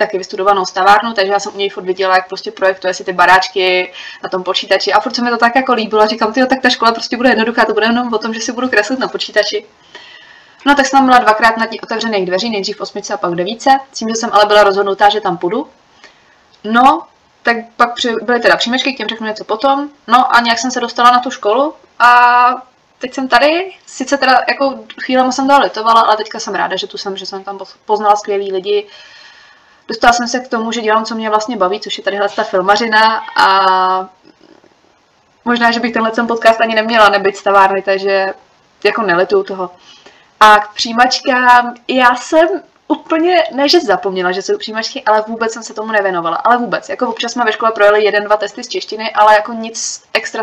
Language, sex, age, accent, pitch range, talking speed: Czech, female, 20-39, native, 200-245 Hz, 210 wpm